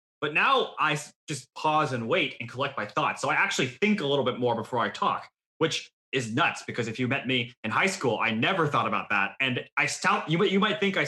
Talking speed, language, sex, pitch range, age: 250 wpm, English, male, 130-170 Hz, 20-39